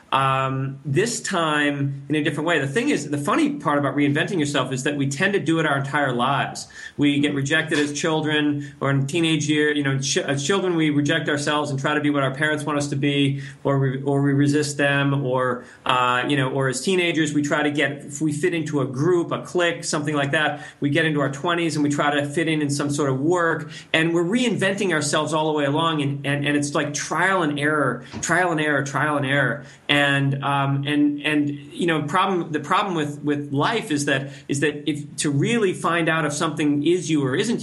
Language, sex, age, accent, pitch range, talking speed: English, male, 30-49, American, 140-165 Hz, 235 wpm